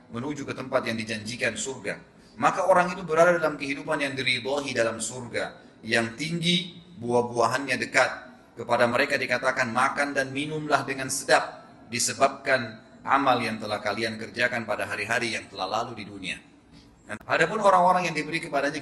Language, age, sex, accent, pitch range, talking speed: Indonesian, 30-49, male, native, 125-155 Hz, 150 wpm